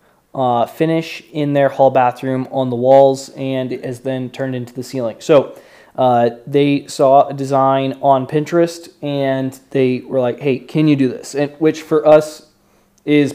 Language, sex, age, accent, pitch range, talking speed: English, male, 20-39, American, 130-150 Hz, 175 wpm